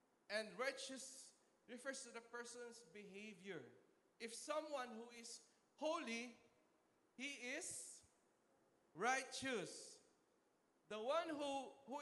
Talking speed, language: 95 wpm, English